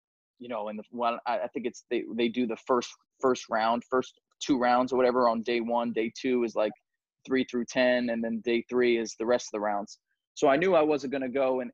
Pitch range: 115-135 Hz